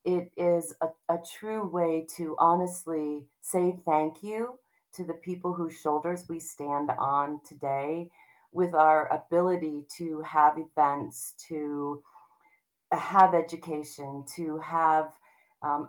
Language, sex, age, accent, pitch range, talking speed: English, female, 40-59, American, 150-170 Hz, 120 wpm